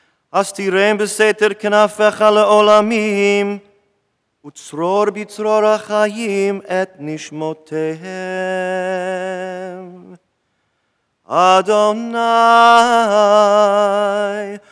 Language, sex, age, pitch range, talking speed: English, male, 40-59, 155-205 Hz, 50 wpm